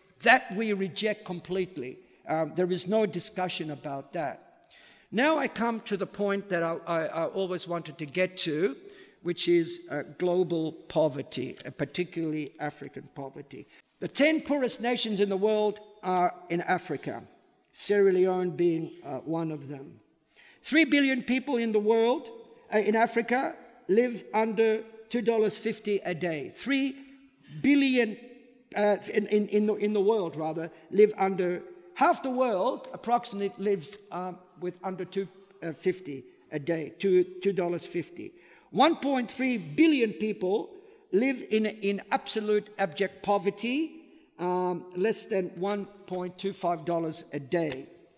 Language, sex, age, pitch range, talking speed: English, male, 60-79, 180-235 Hz, 135 wpm